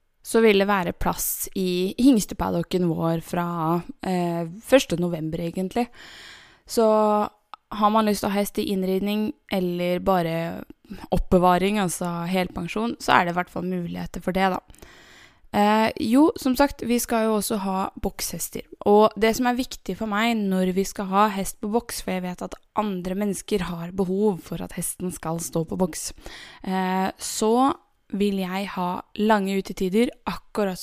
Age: 20-39